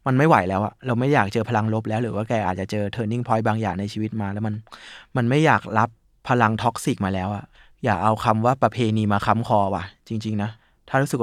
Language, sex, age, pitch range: Thai, male, 20-39, 110-130 Hz